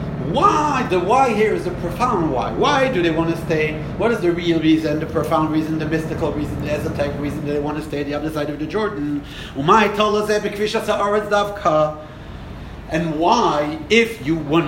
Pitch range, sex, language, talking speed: 155-210 Hz, male, English, 185 wpm